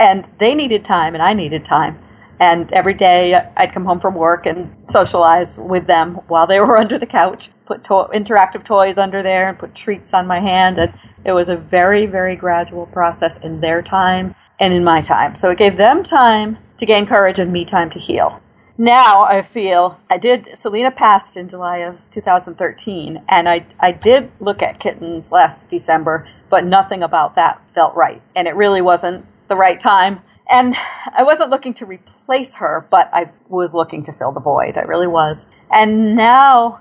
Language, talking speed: English, 190 wpm